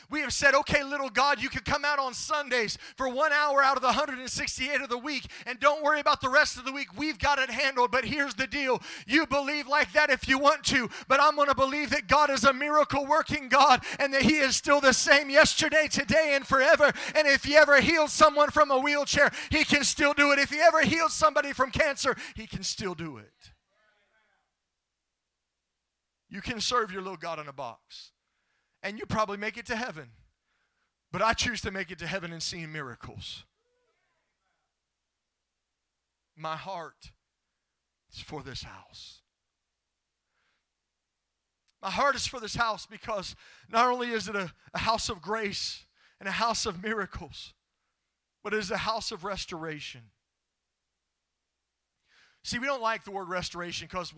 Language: English